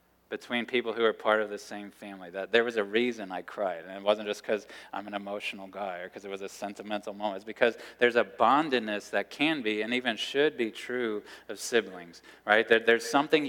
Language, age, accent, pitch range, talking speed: English, 20-39, American, 105-125 Hz, 220 wpm